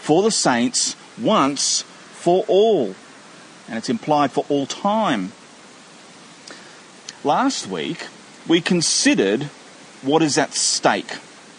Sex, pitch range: male, 125-185 Hz